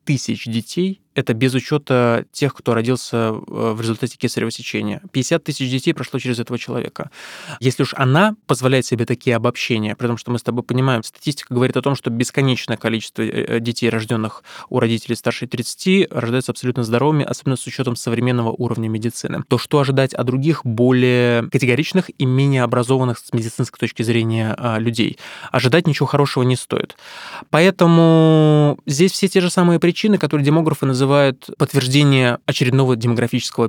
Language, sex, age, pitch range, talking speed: Russian, male, 20-39, 120-145 Hz, 155 wpm